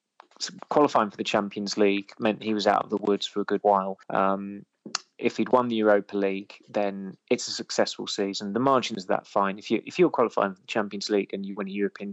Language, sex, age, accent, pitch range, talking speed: English, male, 20-39, British, 100-115 Hz, 240 wpm